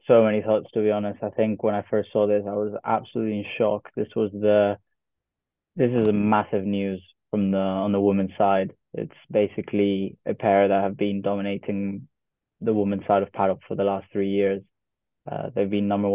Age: 10-29